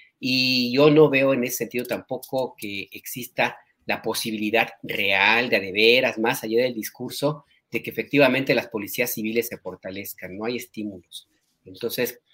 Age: 40-59